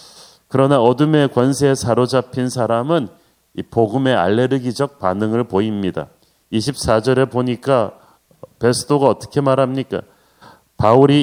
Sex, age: male, 40-59